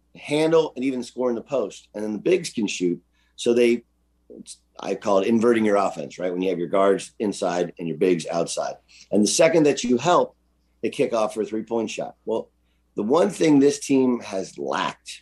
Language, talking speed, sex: English, 215 wpm, male